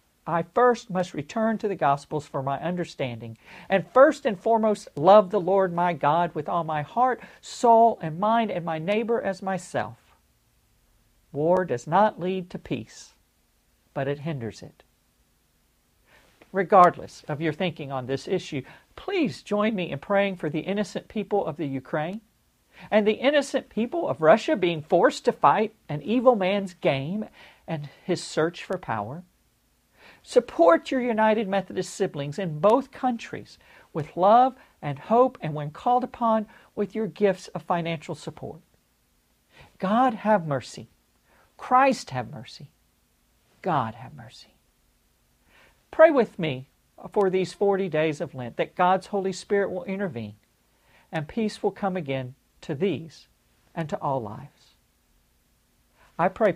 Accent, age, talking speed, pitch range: American, 50-69, 145 wpm, 150-215 Hz